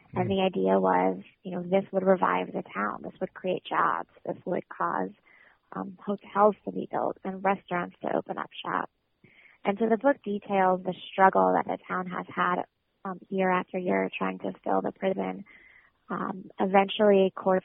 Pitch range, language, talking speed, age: 180-195 Hz, English, 185 wpm, 20-39